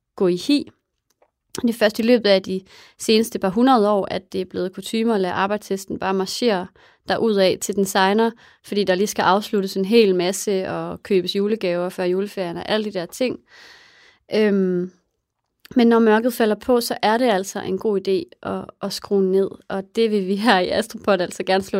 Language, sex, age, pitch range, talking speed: English, female, 30-49, 190-230 Hz, 205 wpm